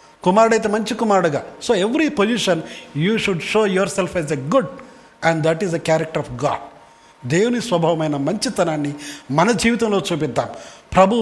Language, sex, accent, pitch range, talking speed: Telugu, male, native, 155-200 Hz, 155 wpm